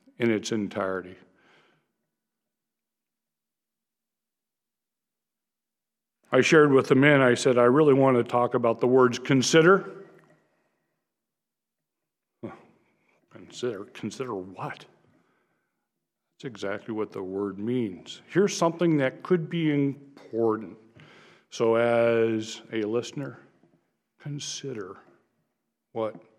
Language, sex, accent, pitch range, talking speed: English, male, American, 115-155 Hz, 90 wpm